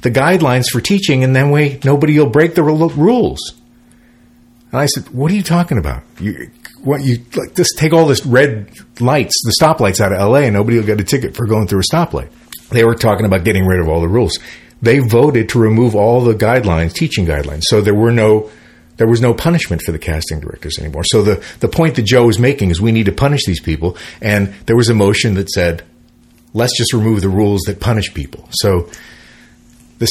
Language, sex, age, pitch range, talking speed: English, male, 40-59, 95-125 Hz, 220 wpm